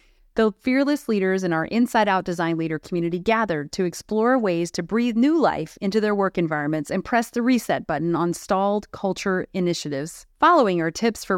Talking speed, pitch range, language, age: 185 wpm, 170-230 Hz, English, 30-49